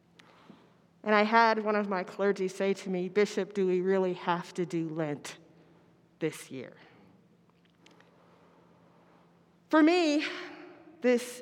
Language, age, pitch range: English, 40-59, 185-250 Hz